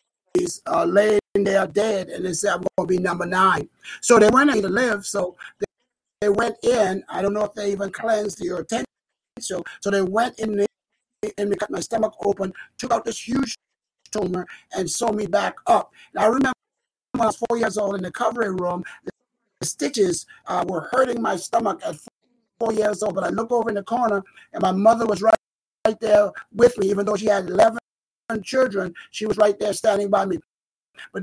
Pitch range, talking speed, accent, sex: 200-235 Hz, 210 wpm, American, male